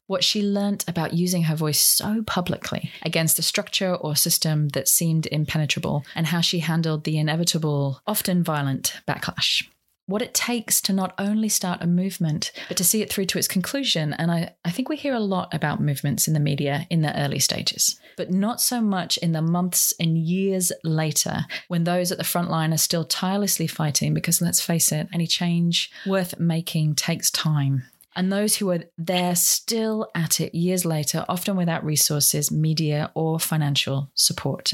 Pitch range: 150-185 Hz